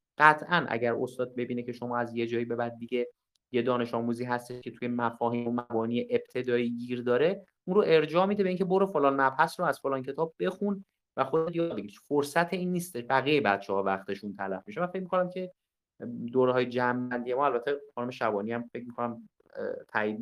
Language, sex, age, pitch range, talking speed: Persian, male, 30-49, 115-145 Hz, 190 wpm